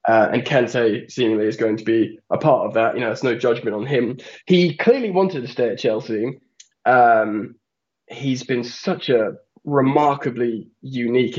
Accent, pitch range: British, 120-145 Hz